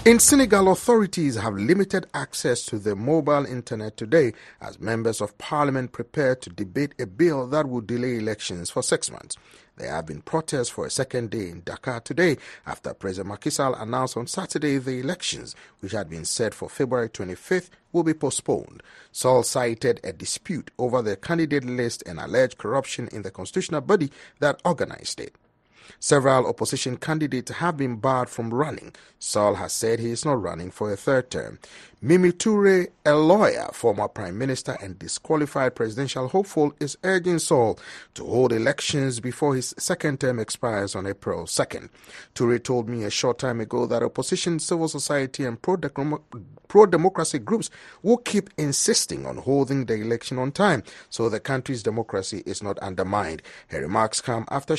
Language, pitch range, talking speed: English, 115-160 Hz, 170 wpm